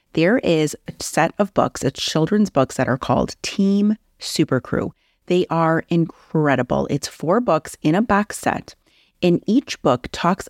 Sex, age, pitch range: female, 30-49, 150-200 Hz